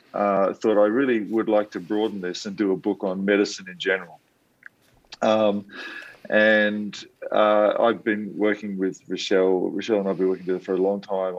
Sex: male